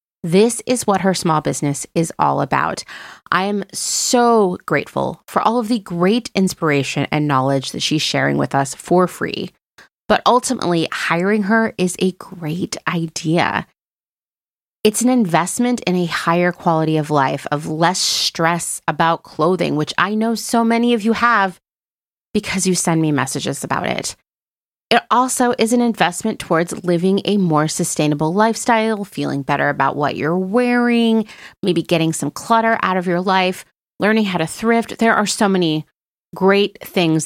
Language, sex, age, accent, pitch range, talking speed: English, female, 30-49, American, 160-220 Hz, 160 wpm